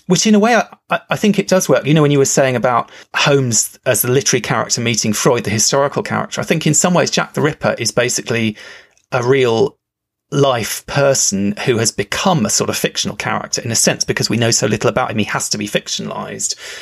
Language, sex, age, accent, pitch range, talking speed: English, male, 30-49, British, 115-185 Hz, 230 wpm